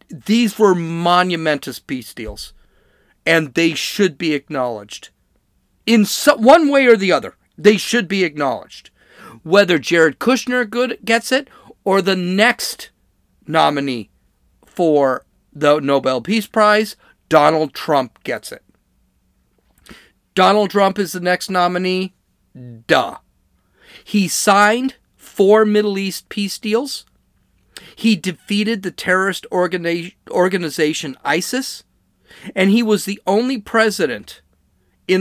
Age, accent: 40-59, American